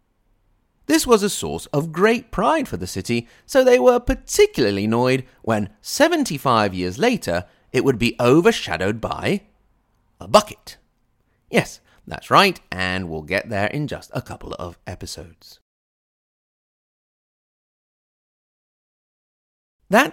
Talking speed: 120 wpm